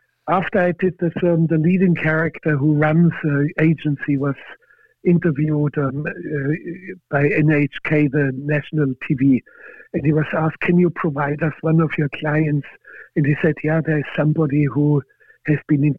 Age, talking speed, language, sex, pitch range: 60-79, 175 wpm, English, male, 150-180 Hz